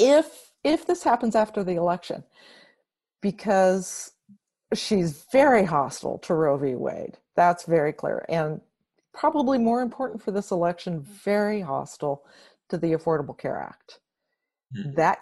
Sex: female